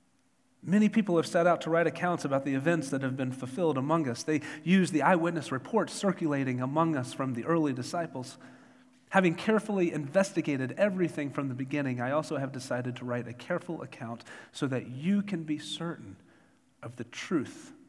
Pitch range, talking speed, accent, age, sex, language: 140-195 Hz, 180 wpm, American, 40-59, male, English